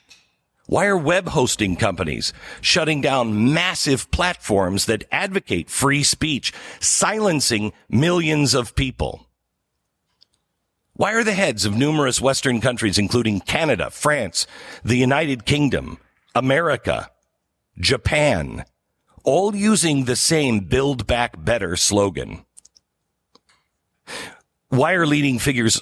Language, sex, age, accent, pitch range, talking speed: English, male, 50-69, American, 105-150 Hz, 105 wpm